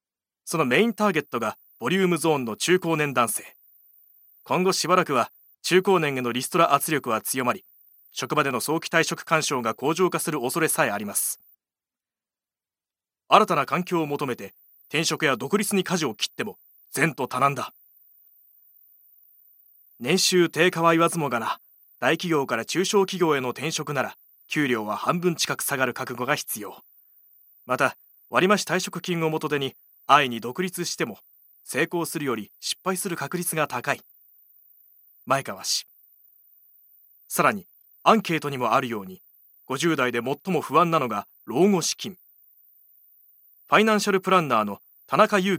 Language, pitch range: Japanese, 130-180 Hz